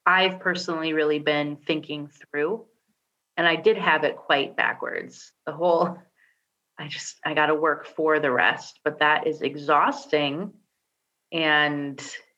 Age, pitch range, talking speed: 30-49, 150-175 Hz, 140 wpm